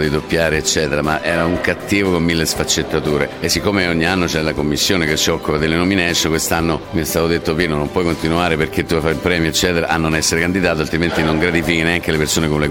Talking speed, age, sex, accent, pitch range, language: 230 wpm, 50-69, male, native, 75-85 Hz, Italian